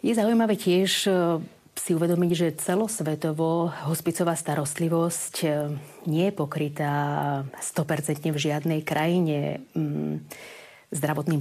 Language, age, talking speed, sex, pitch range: Slovak, 30-49, 90 wpm, female, 145-170 Hz